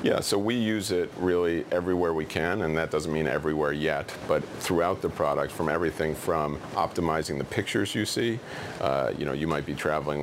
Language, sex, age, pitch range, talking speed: English, male, 40-59, 75-90 Hz, 205 wpm